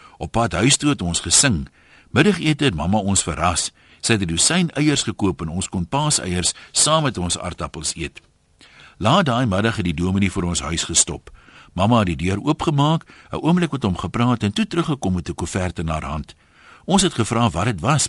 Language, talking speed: Dutch, 210 wpm